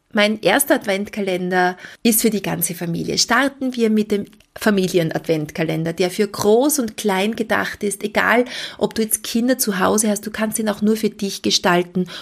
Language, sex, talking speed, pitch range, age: German, female, 175 wpm, 180-220 Hz, 30-49